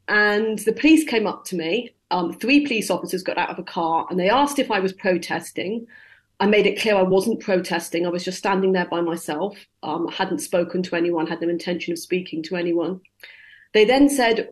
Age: 40-59